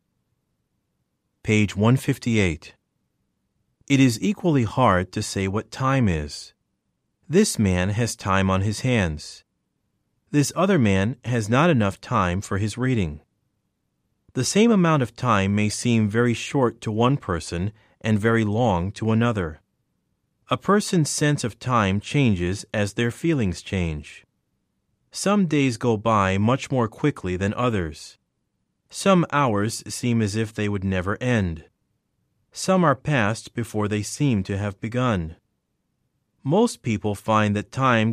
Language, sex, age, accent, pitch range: Korean, male, 30-49, American, 100-130 Hz